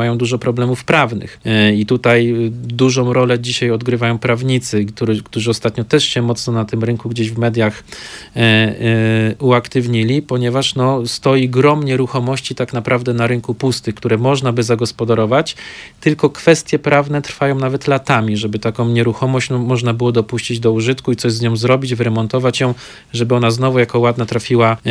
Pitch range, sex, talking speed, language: 115-130 Hz, male, 155 wpm, Polish